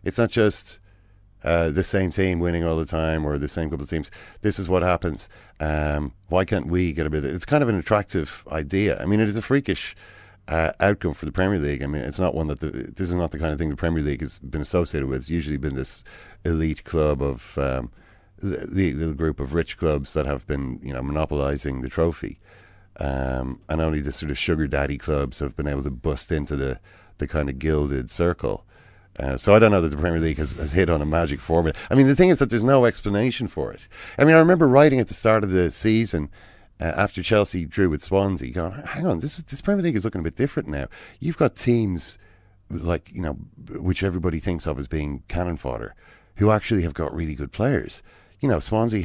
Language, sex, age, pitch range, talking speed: English, male, 40-59, 75-95 Hz, 240 wpm